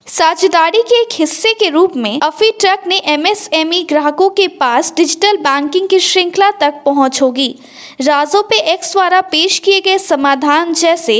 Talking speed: 160 wpm